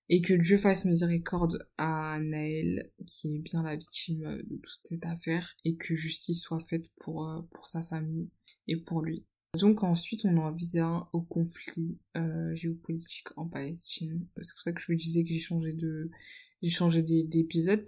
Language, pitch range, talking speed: French, 160-180 Hz, 180 wpm